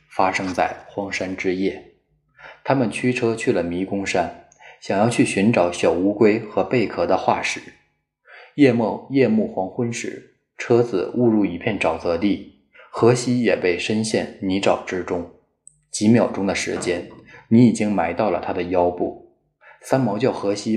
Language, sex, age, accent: Chinese, male, 20-39, native